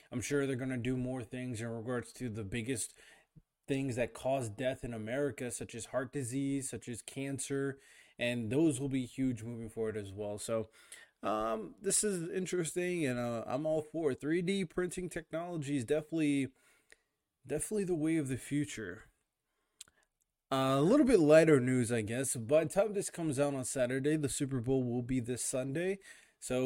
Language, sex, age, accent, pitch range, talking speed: English, male, 20-39, American, 125-155 Hz, 185 wpm